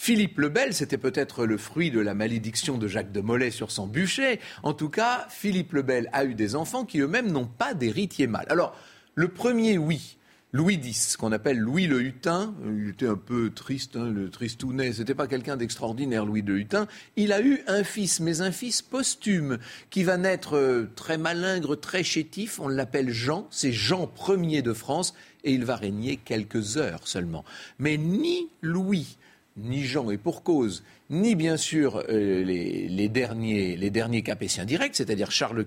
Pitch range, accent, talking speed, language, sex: 115-185 Hz, French, 185 wpm, French, male